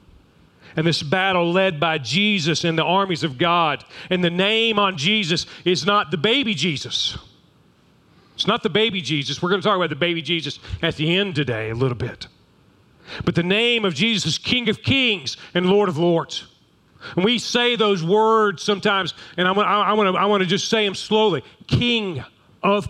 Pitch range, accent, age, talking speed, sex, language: 140-205 Hz, American, 40-59, 190 wpm, male, English